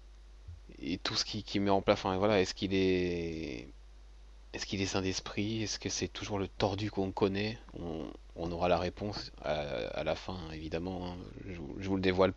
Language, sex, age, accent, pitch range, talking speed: French, male, 30-49, French, 90-110 Hz, 200 wpm